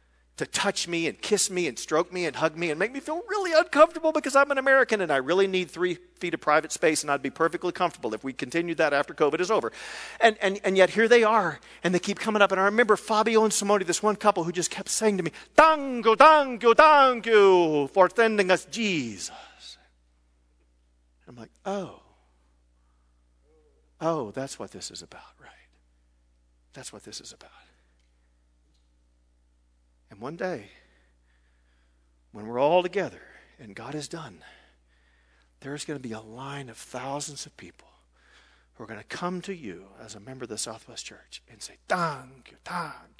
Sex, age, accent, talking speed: male, 50-69, American, 190 wpm